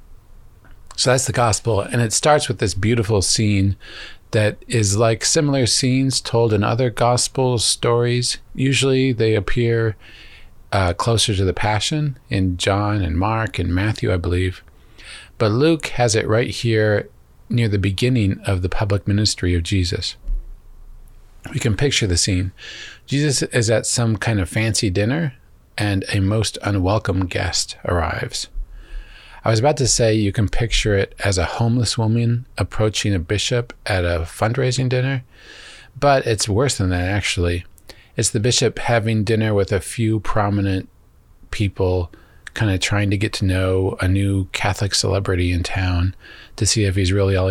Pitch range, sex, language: 95-115 Hz, male, English